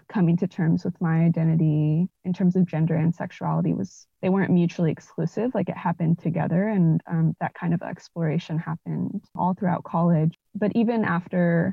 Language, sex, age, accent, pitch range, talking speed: English, female, 20-39, American, 165-185 Hz, 175 wpm